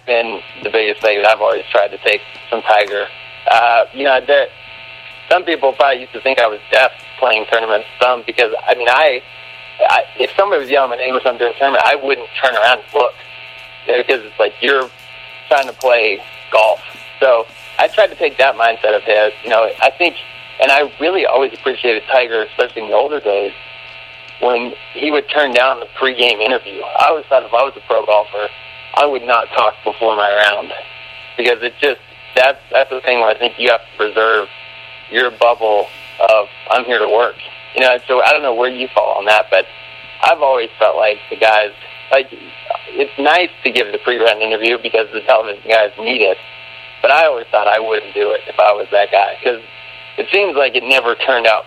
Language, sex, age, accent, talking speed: English, male, 40-59, American, 210 wpm